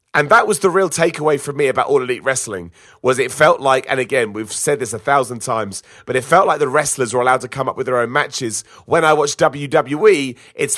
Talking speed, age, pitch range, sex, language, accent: 245 wpm, 30-49, 120-155 Hz, male, English, British